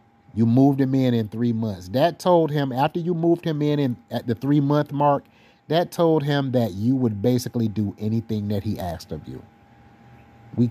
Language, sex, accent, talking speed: English, male, American, 200 wpm